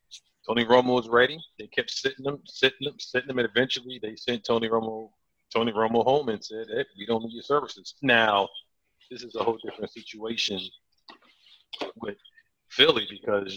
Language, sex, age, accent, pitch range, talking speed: English, male, 40-59, American, 110-135 Hz, 175 wpm